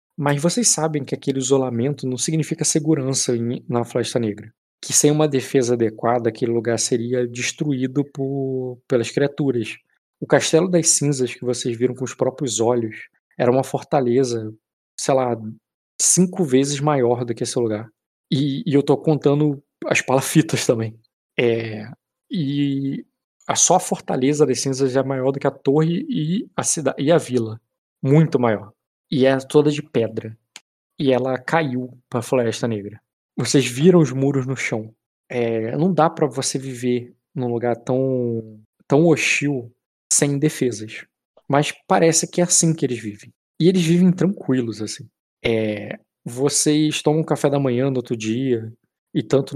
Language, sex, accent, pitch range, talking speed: Portuguese, male, Brazilian, 120-150 Hz, 155 wpm